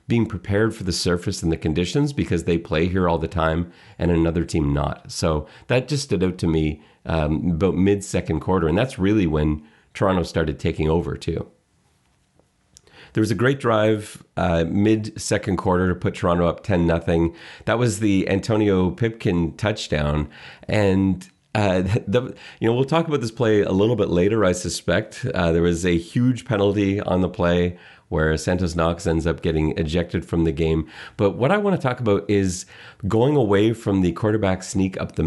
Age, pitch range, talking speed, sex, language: 30-49, 85-110 Hz, 190 wpm, male, English